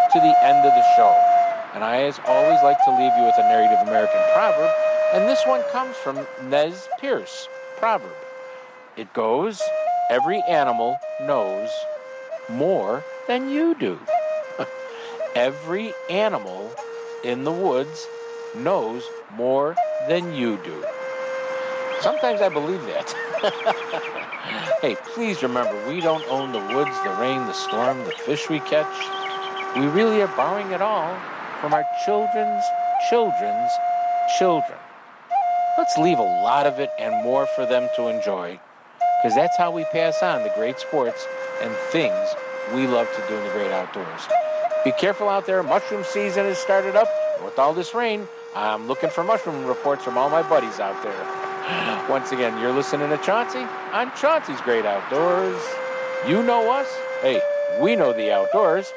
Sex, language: male, English